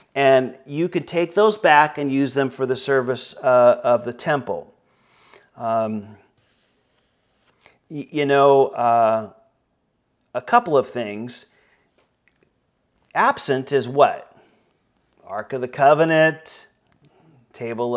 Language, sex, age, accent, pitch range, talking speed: Finnish, male, 40-59, American, 115-140 Hz, 105 wpm